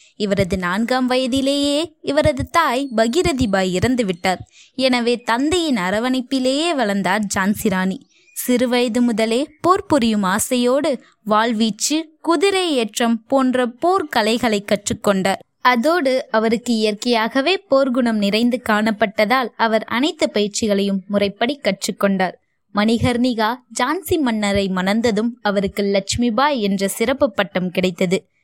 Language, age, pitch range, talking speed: Tamil, 20-39, 205-260 Hz, 90 wpm